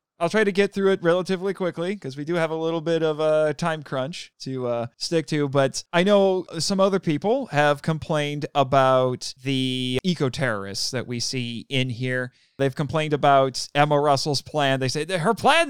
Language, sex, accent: English, male, American